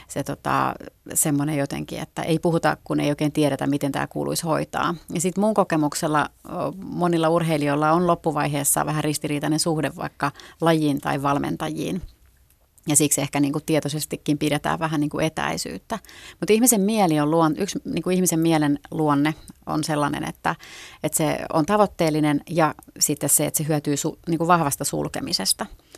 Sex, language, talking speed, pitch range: female, Finnish, 145 wpm, 145-165 Hz